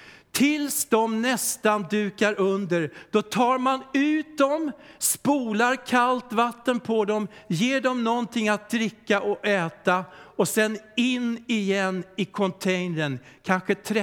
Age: 60-79